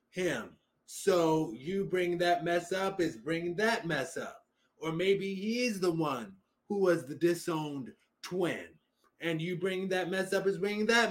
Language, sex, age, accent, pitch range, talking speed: English, male, 20-39, American, 155-195 Hz, 165 wpm